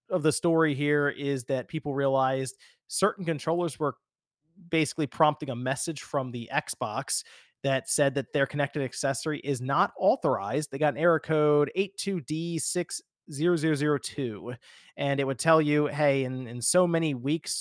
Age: 30-49